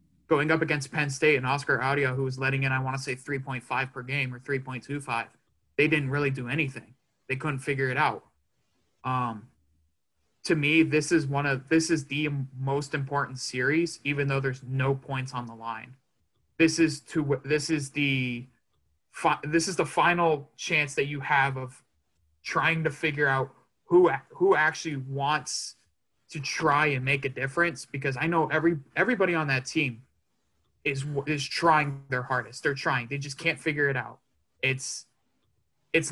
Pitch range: 130-155 Hz